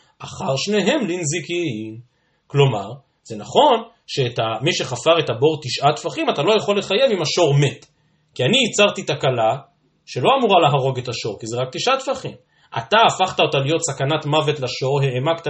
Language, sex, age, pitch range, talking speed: Hebrew, male, 30-49, 135-185 Hz, 165 wpm